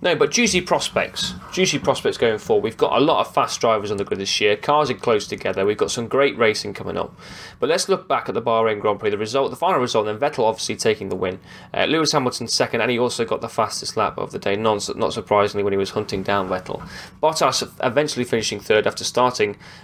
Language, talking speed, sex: English, 240 wpm, male